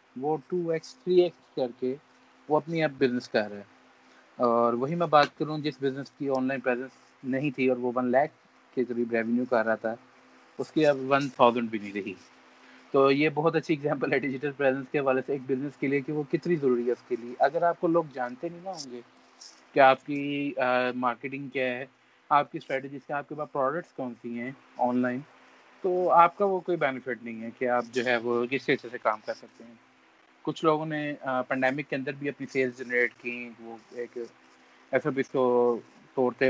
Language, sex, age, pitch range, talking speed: Urdu, male, 30-49, 120-150 Hz, 205 wpm